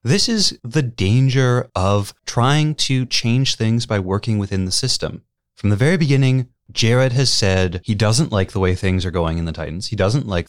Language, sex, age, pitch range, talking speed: English, male, 30-49, 95-115 Hz, 200 wpm